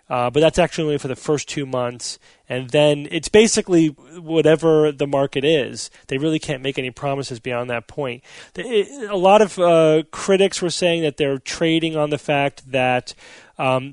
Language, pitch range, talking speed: English, 130-165 Hz, 180 wpm